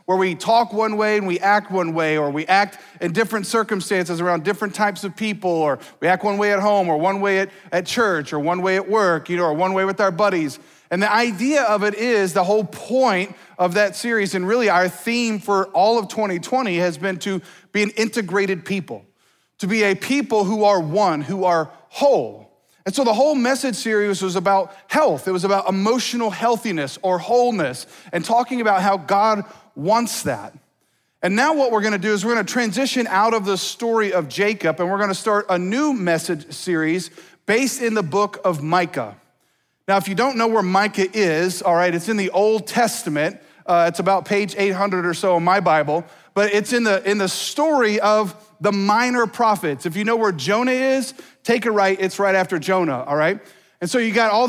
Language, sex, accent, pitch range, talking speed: English, male, American, 185-225 Hz, 215 wpm